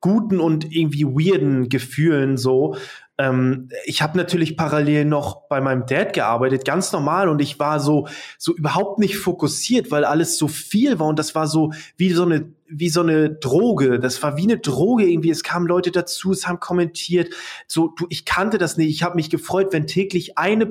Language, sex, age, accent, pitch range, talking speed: German, male, 20-39, German, 145-170 Hz, 195 wpm